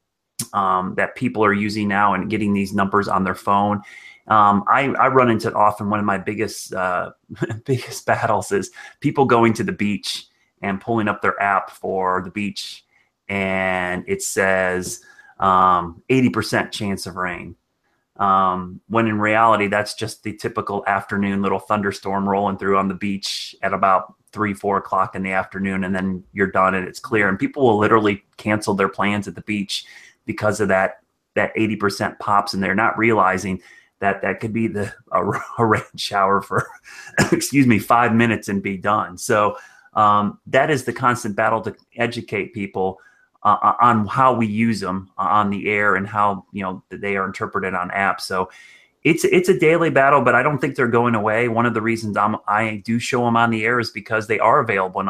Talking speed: 190 wpm